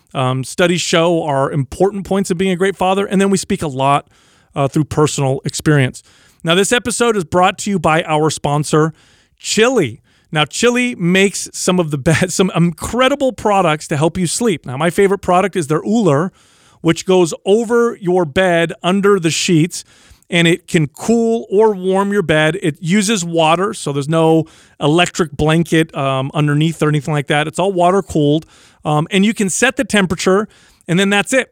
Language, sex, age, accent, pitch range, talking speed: English, male, 40-59, American, 150-195 Hz, 185 wpm